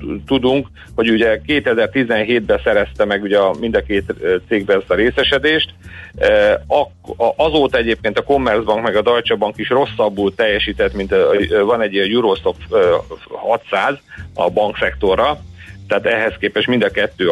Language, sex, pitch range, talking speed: Hungarian, male, 100-140 Hz, 140 wpm